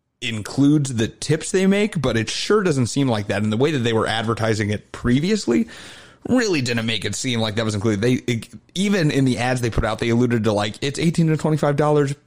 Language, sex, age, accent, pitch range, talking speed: English, male, 30-49, American, 115-155 Hz, 230 wpm